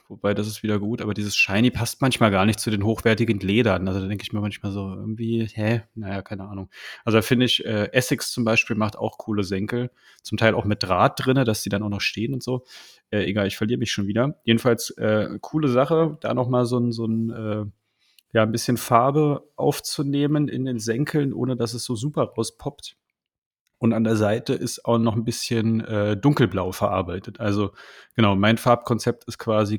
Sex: male